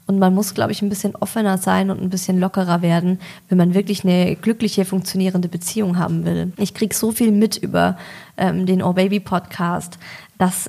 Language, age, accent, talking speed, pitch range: German, 20-39, American, 200 wpm, 185-225 Hz